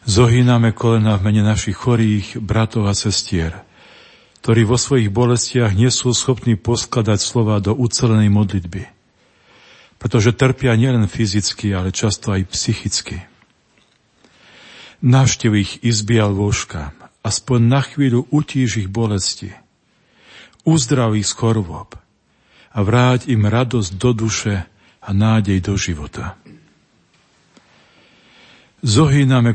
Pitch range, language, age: 100-120 Hz, Slovak, 50-69